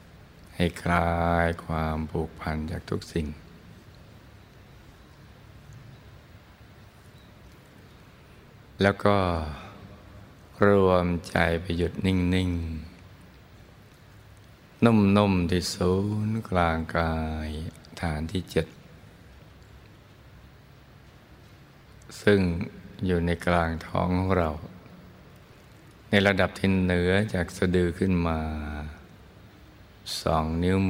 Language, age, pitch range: Thai, 60-79, 85-100 Hz